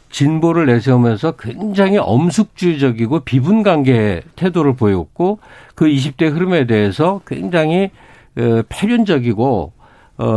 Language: Korean